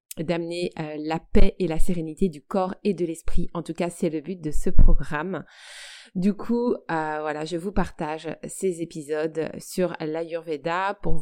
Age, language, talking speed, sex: 30-49, French, 175 wpm, female